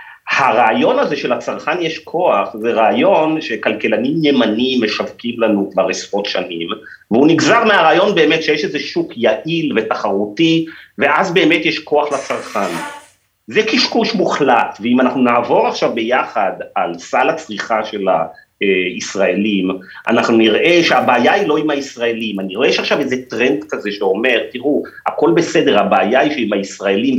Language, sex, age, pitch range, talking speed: Hebrew, male, 40-59, 120-195 Hz, 140 wpm